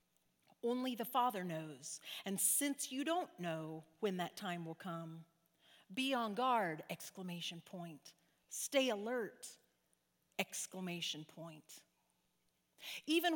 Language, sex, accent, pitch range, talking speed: English, female, American, 155-255 Hz, 110 wpm